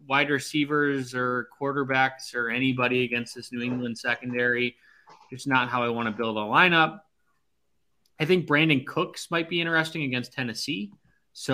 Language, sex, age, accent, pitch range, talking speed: English, male, 20-39, American, 115-145 Hz, 155 wpm